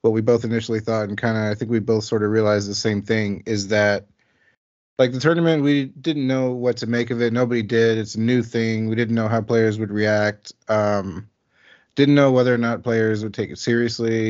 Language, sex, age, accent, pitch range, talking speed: English, male, 30-49, American, 110-125 Hz, 230 wpm